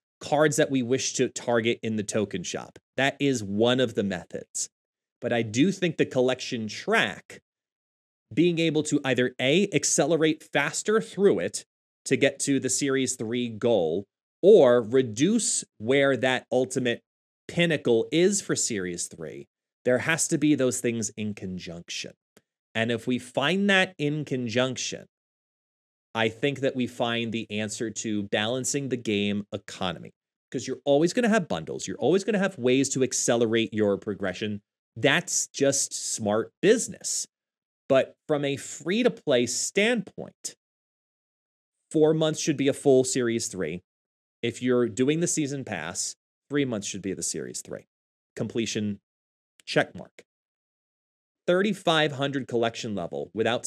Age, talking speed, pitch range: 30-49, 145 wpm, 115-150 Hz